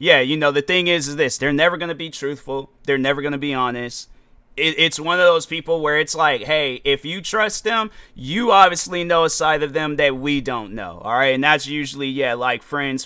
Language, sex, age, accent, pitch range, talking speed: English, male, 30-49, American, 130-160 Hz, 240 wpm